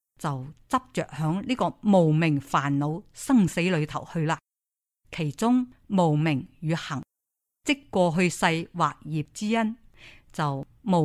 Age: 50-69